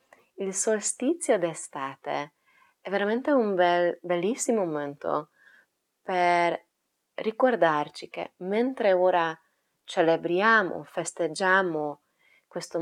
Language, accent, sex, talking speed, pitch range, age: Italian, native, female, 80 wpm, 155-195 Hz, 20-39